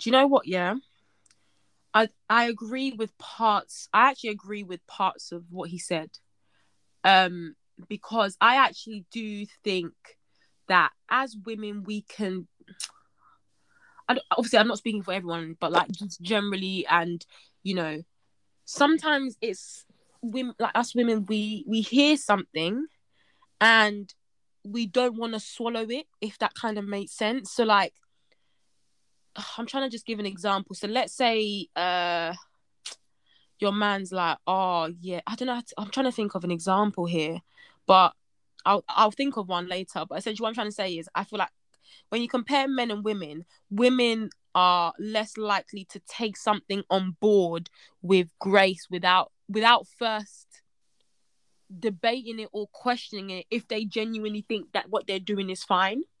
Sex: female